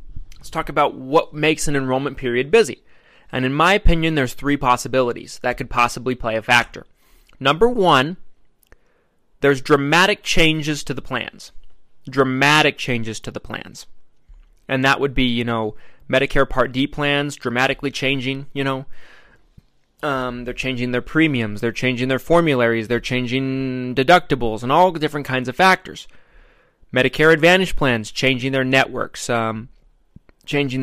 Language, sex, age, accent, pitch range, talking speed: English, male, 20-39, American, 125-150 Hz, 150 wpm